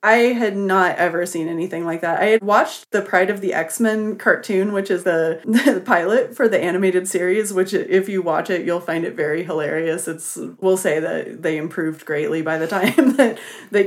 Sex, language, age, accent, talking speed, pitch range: female, English, 20-39, American, 210 wpm, 170-220 Hz